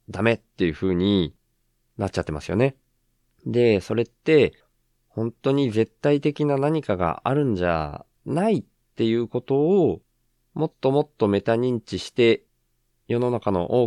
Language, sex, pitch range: Japanese, male, 90-135 Hz